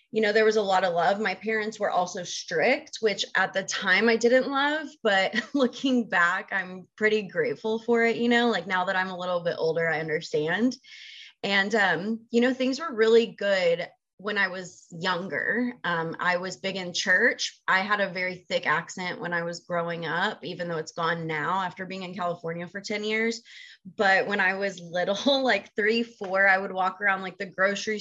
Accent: American